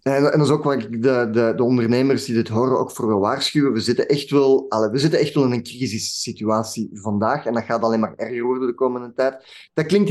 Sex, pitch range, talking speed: male, 115-145 Hz, 255 wpm